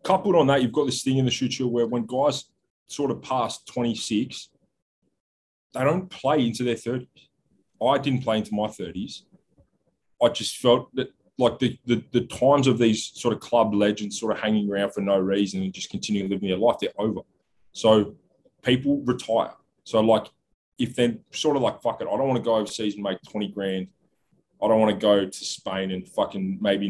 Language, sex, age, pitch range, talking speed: English, male, 20-39, 100-120 Hz, 205 wpm